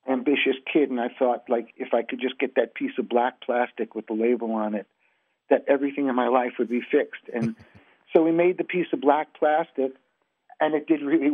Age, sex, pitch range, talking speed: 50-69, male, 125-165 Hz, 220 wpm